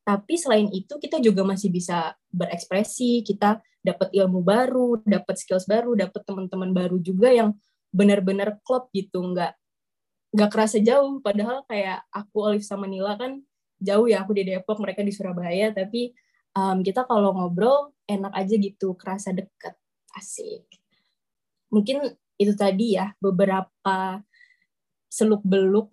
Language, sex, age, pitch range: Indonesian, female, 20-39, 185-215 Hz